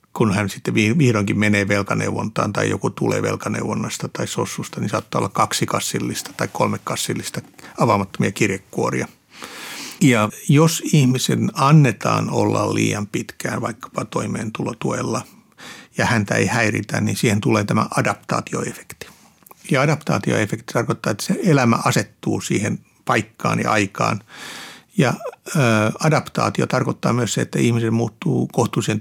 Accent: native